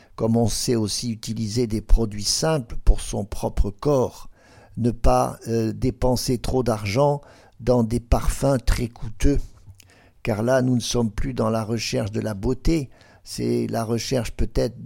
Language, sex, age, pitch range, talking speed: French, male, 50-69, 110-130 Hz, 160 wpm